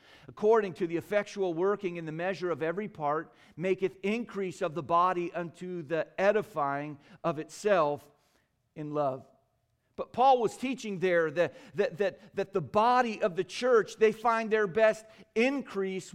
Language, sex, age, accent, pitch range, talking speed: English, male, 40-59, American, 140-190 Hz, 155 wpm